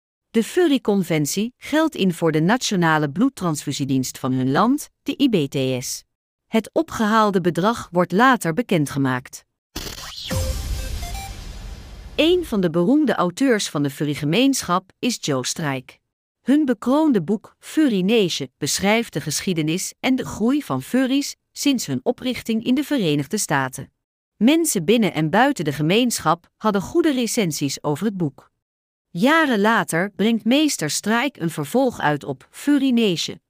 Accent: Dutch